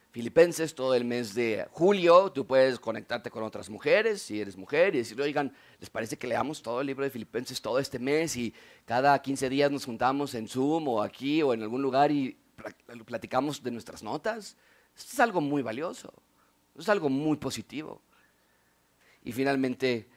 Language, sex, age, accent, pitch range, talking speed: Spanish, male, 40-59, Mexican, 120-175 Hz, 180 wpm